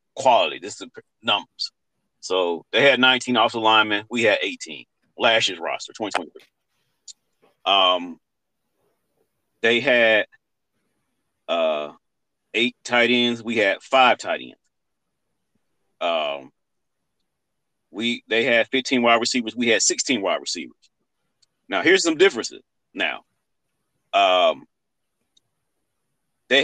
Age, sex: 40-59, male